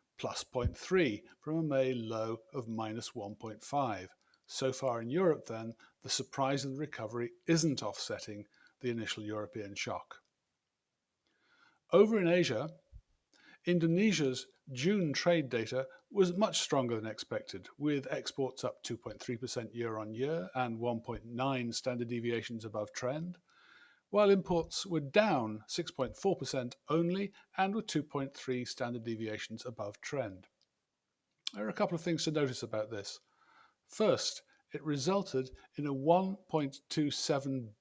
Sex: male